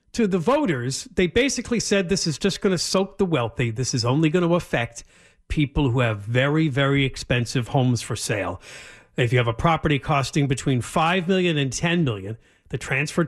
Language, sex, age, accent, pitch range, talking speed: English, male, 50-69, American, 135-190 Hz, 195 wpm